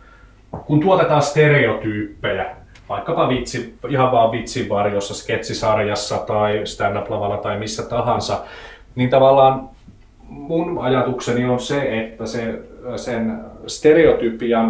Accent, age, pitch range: native, 30-49, 105-125 Hz